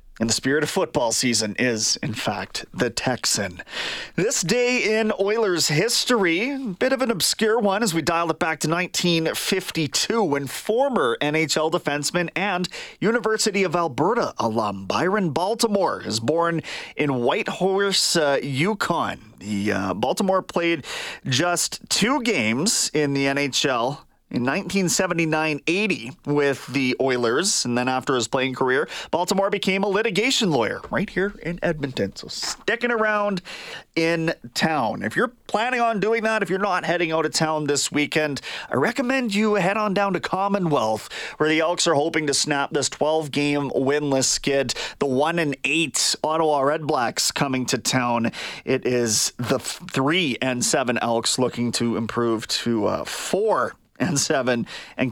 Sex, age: male, 30-49